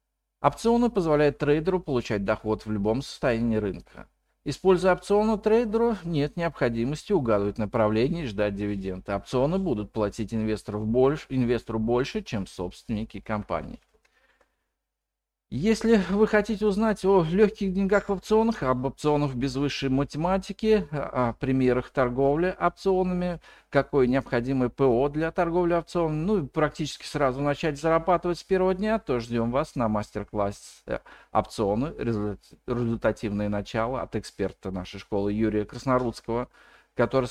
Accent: native